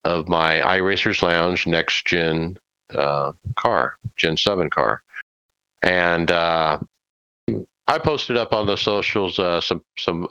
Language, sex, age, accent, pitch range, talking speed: English, male, 50-69, American, 85-110 Hz, 130 wpm